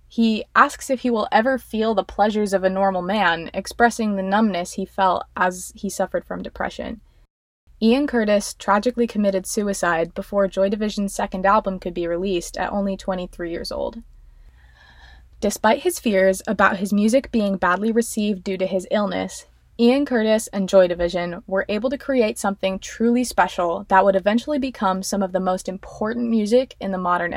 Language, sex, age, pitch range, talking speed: English, female, 20-39, 180-225 Hz, 175 wpm